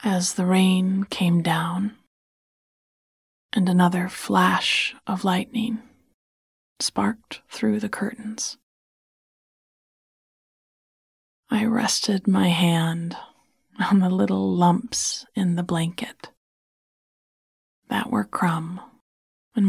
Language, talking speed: English, 90 wpm